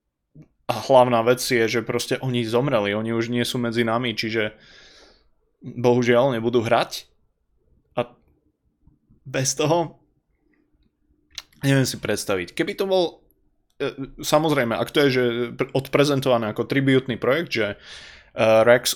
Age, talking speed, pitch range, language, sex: 20-39, 120 wpm, 115-130 Hz, Slovak, male